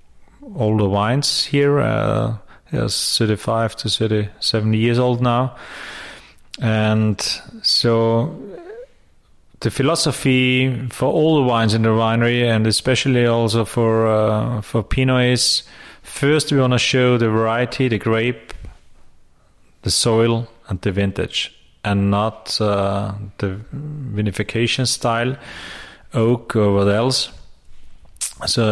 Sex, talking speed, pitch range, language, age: male, 115 wpm, 105-120 Hz, English, 30-49